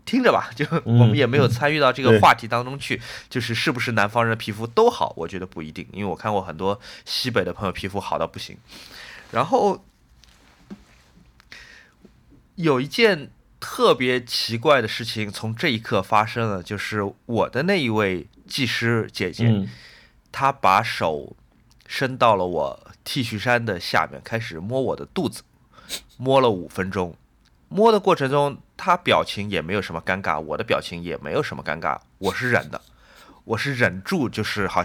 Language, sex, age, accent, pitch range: Chinese, male, 30-49, native, 100-140 Hz